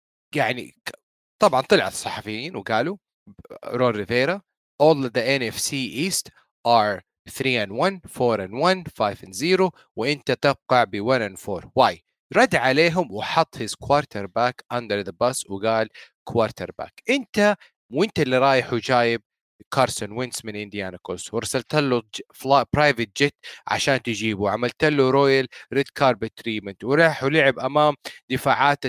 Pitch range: 120-150 Hz